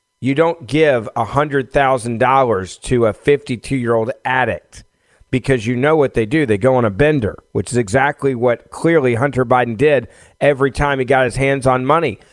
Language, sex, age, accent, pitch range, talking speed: English, male, 40-59, American, 115-145 Hz, 170 wpm